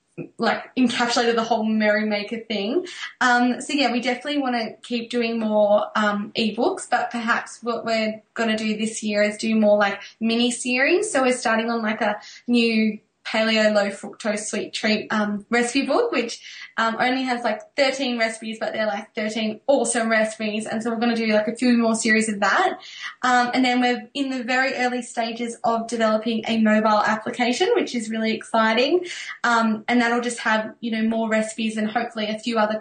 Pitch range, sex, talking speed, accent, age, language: 215-250 Hz, female, 190 wpm, Australian, 10-29, English